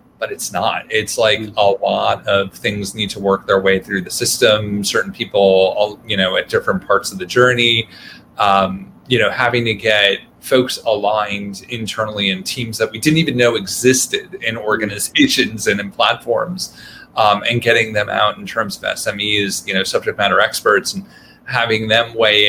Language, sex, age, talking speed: English, male, 30-49, 180 wpm